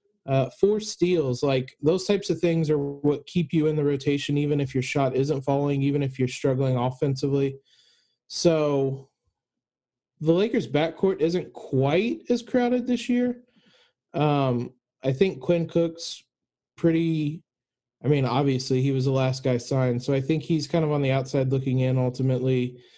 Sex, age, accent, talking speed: male, 20-39, American, 165 wpm